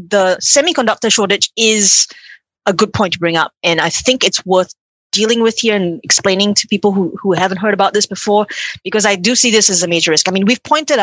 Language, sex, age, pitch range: English, female, 30-49, 180-225 Hz